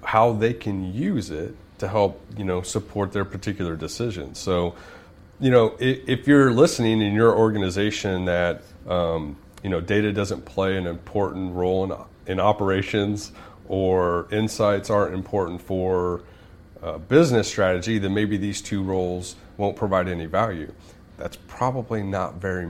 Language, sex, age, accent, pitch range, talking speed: English, male, 30-49, American, 90-105 Hz, 150 wpm